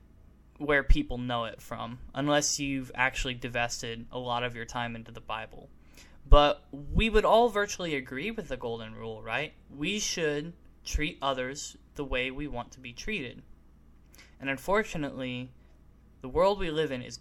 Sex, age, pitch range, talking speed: male, 10-29, 115-150 Hz, 165 wpm